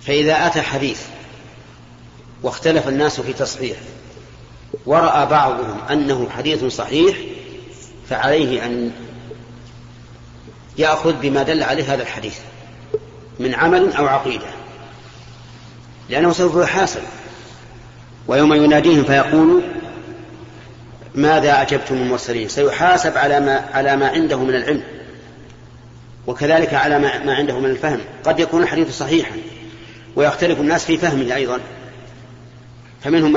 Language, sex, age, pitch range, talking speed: Arabic, male, 40-59, 120-150 Hz, 100 wpm